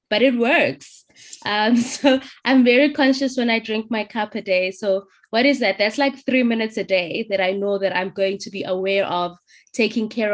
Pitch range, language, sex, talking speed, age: 185-225 Hz, English, female, 215 wpm, 20-39